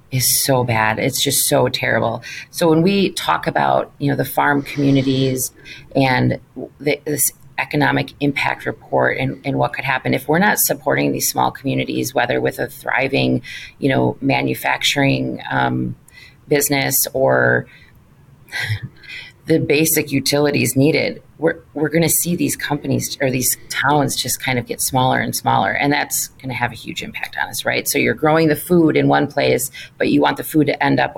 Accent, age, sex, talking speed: American, 30-49, female, 175 wpm